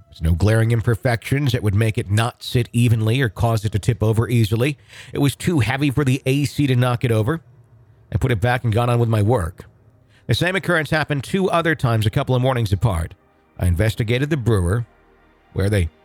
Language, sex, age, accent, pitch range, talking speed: English, male, 50-69, American, 105-135 Hz, 210 wpm